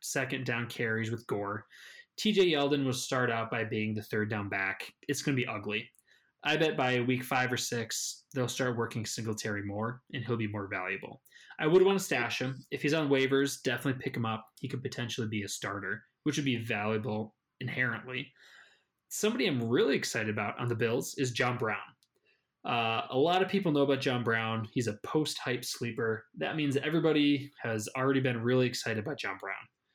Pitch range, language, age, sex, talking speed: 115-145 Hz, English, 20-39, male, 195 wpm